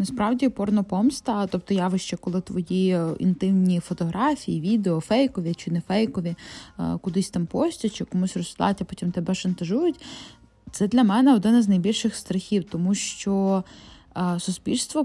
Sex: female